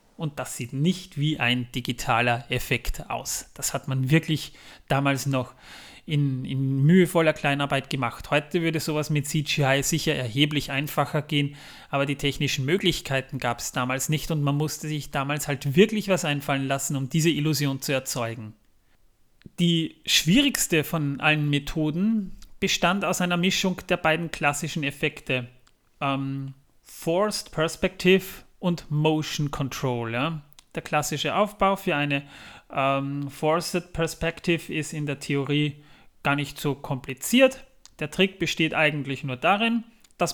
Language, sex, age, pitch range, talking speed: German, male, 30-49, 135-165 Hz, 140 wpm